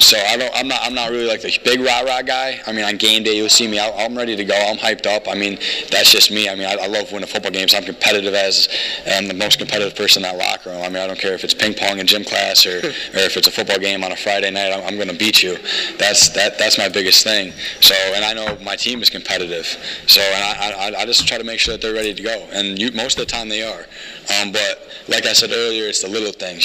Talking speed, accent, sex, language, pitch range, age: 295 wpm, American, male, English, 95-105 Hz, 20-39